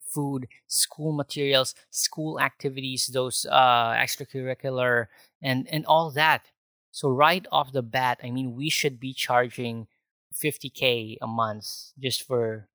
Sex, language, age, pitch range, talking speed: male, English, 20-39, 115-140 Hz, 130 wpm